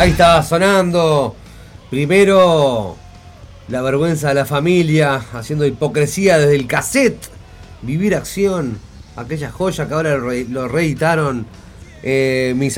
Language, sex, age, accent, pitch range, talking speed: Spanish, male, 30-49, Argentinian, 110-150 Hz, 115 wpm